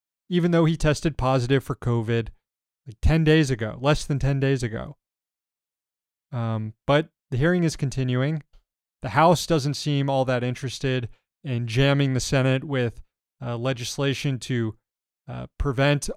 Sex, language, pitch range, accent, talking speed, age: male, English, 125-170 Hz, American, 145 wpm, 30-49